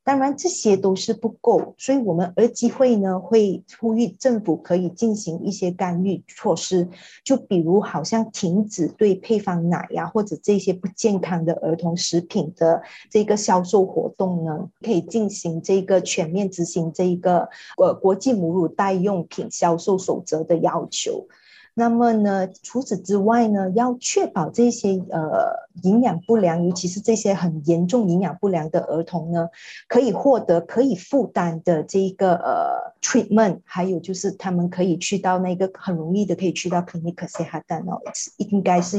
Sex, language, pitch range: female, Chinese, 175-220 Hz